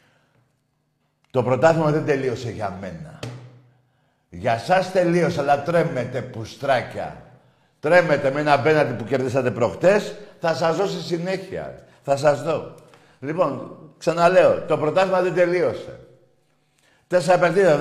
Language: Greek